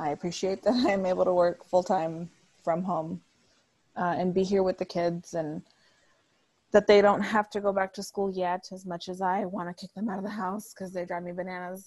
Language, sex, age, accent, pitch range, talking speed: English, female, 20-39, American, 175-200 Hz, 240 wpm